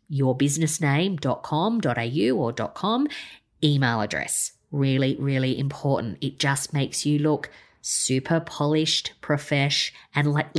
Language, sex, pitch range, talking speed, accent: English, female, 130-150 Hz, 125 wpm, Australian